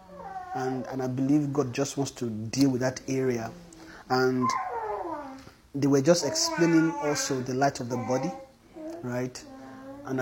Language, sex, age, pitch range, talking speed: English, male, 30-49, 135-180 Hz, 145 wpm